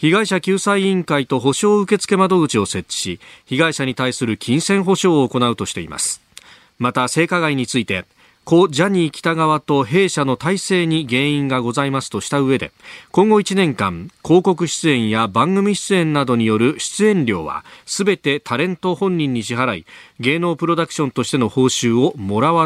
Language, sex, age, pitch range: Japanese, male, 40-59, 125-185 Hz